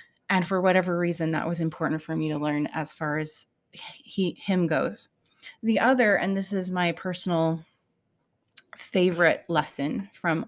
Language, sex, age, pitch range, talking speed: English, female, 20-39, 165-205 Hz, 155 wpm